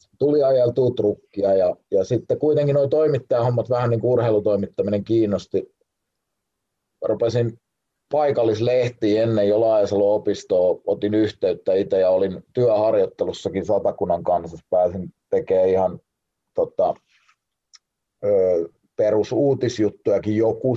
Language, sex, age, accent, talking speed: Finnish, male, 30-49, native, 90 wpm